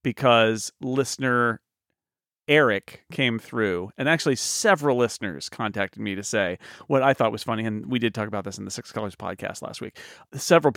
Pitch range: 110-135 Hz